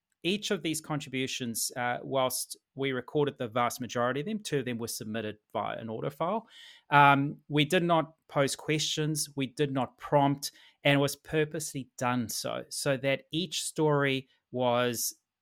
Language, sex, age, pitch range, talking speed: English, male, 30-49, 130-160 Hz, 165 wpm